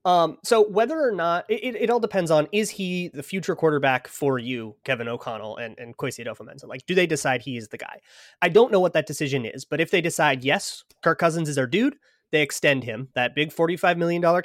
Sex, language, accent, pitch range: male, English, American, 125-155 Hz